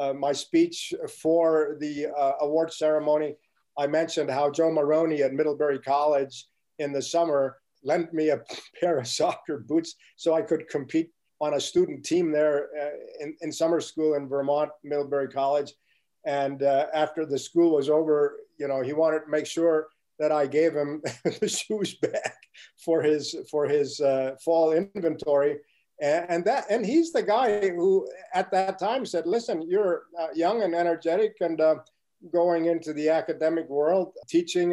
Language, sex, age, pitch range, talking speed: English, male, 50-69, 145-170 Hz, 165 wpm